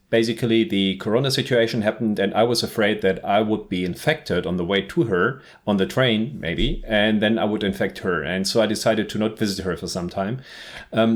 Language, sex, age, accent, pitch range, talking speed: English, male, 40-59, German, 100-120 Hz, 220 wpm